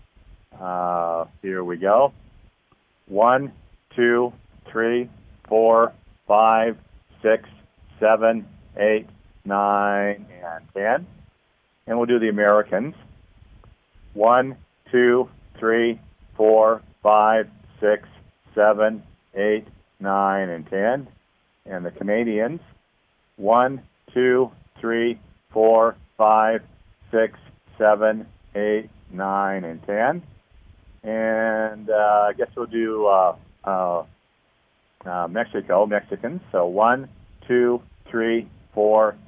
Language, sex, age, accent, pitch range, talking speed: English, male, 50-69, American, 95-110 Hz, 90 wpm